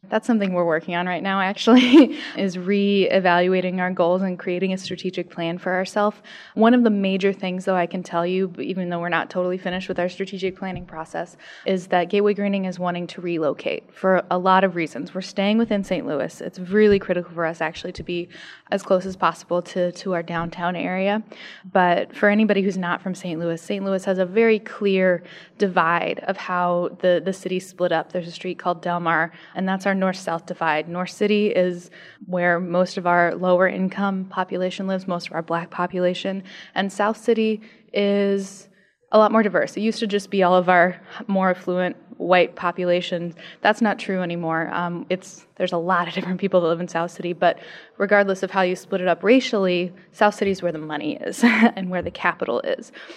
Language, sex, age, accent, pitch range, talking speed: English, female, 10-29, American, 175-200 Hz, 205 wpm